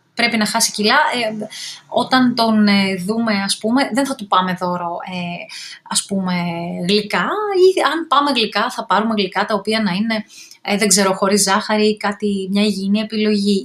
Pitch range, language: 200-250 Hz, Greek